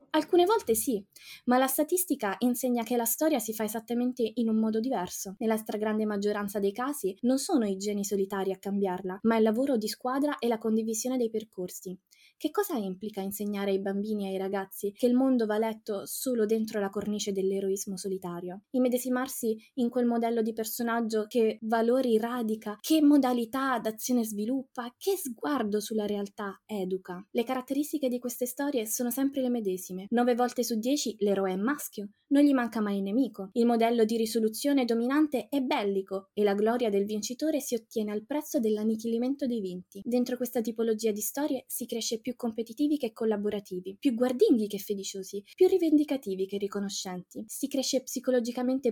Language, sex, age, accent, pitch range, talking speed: Italian, female, 20-39, native, 210-255 Hz, 170 wpm